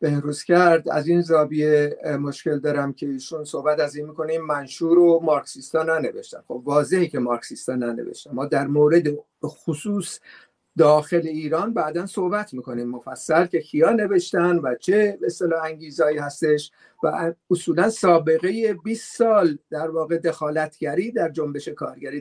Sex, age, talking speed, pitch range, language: male, 50-69, 150 wpm, 155-210 Hz, Persian